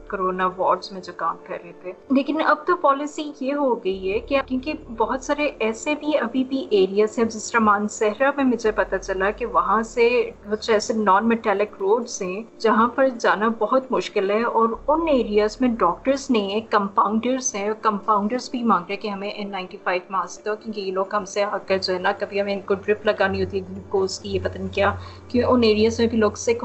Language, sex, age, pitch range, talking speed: Urdu, female, 20-39, 195-250 Hz, 150 wpm